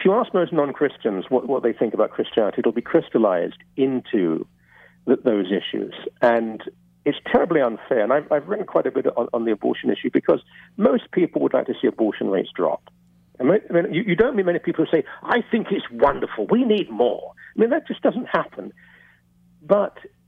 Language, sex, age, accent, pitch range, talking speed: English, male, 50-69, British, 135-210 Hz, 200 wpm